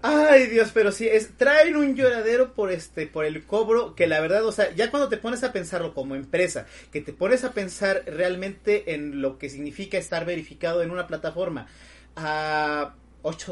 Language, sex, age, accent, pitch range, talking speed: Spanish, male, 30-49, Mexican, 145-205 Hz, 190 wpm